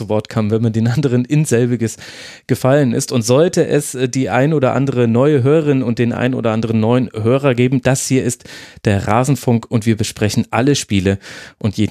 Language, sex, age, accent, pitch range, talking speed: German, male, 30-49, German, 110-140 Hz, 190 wpm